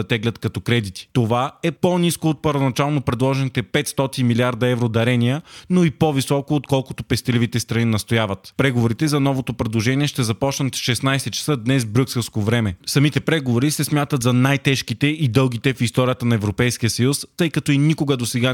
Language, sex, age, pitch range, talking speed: Bulgarian, male, 20-39, 120-145 Hz, 165 wpm